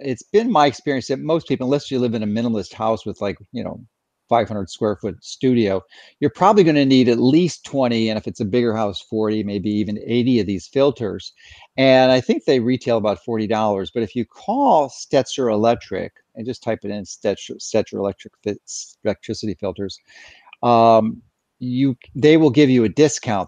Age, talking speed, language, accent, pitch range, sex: 40-59, 190 wpm, English, American, 110-135 Hz, male